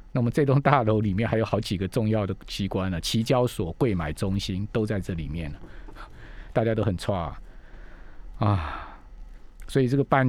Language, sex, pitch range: Chinese, male, 105-145 Hz